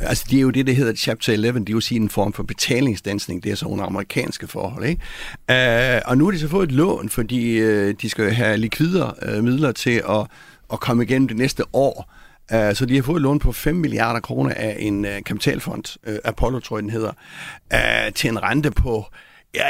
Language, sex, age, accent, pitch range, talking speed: Danish, male, 60-79, native, 110-145 Hz, 230 wpm